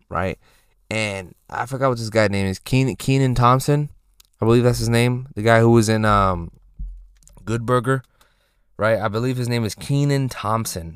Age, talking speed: 20-39, 175 wpm